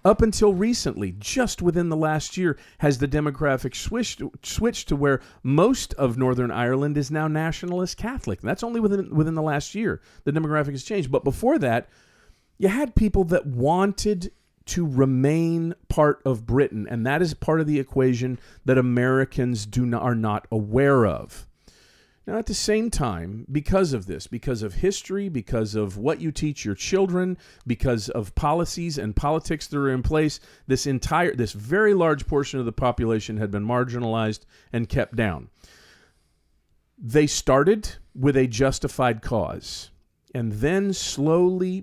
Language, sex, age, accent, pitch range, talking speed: English, male, 40-59, American, 120-165 Hz, 165 wpm